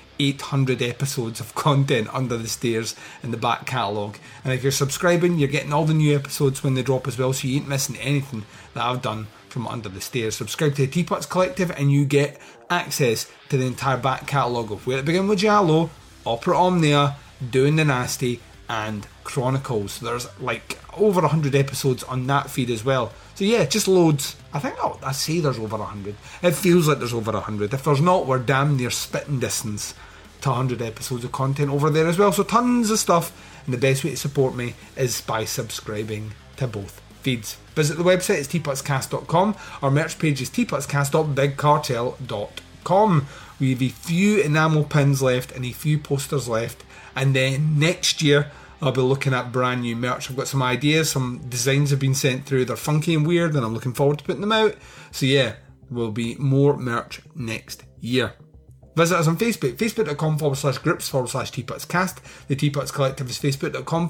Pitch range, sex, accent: 125-150 Hz, male, British